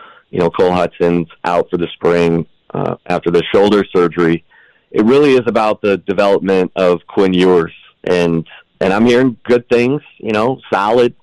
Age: 30-49